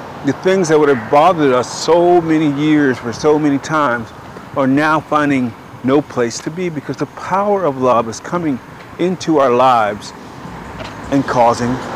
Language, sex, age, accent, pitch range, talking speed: English, male, 50-69, American, 135-165 Hz, 165 wpm